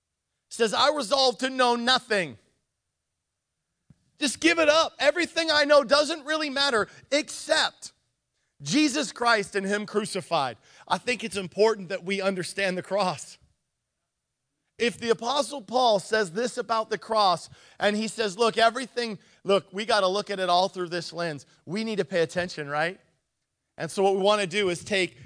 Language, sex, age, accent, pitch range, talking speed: English, male, 40-59, American, 150-215 Hz, 165 wpm